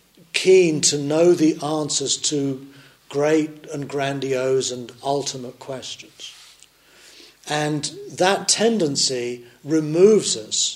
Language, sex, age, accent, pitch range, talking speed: English, male, 40-59, British, 130-155 Hz, 95 wpm